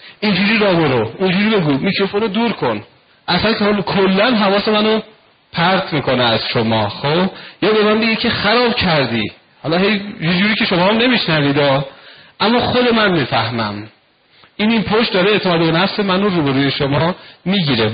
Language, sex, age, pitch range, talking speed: Persian, male, 40-59, 150-205 Hz, 165 wpm